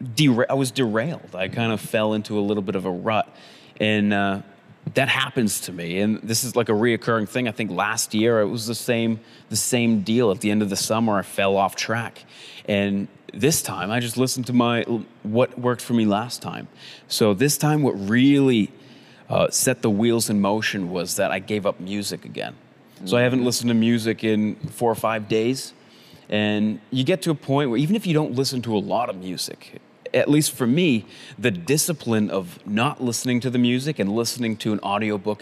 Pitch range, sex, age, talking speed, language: 105-125 Hz, male, 30-49, 215 wpm, English